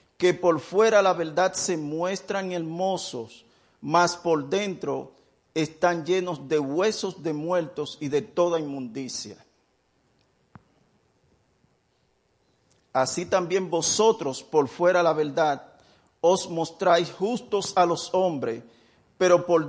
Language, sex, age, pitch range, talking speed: English, male, 50-69, 155-195 Hz, 110 wpm